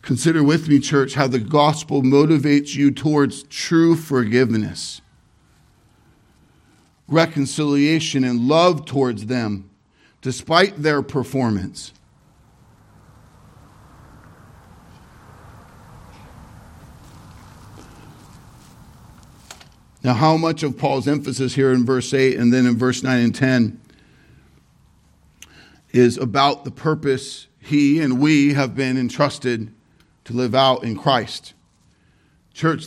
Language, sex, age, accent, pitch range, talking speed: English, male, 50-69, American, 130-185 Hz, 95 wpm